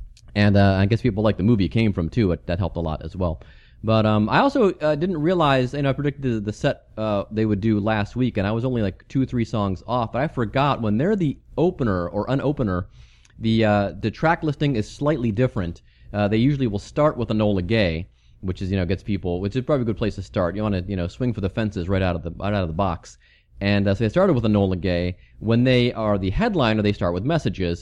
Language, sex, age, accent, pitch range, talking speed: English, male, 30-49, American, 100-135 Hz, 270 wpm